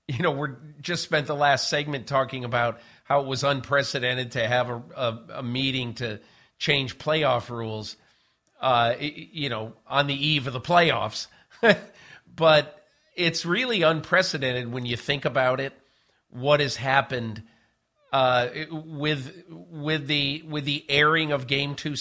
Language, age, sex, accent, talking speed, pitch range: English, 50-69, male, American, 150 wpm, 125-155 Hz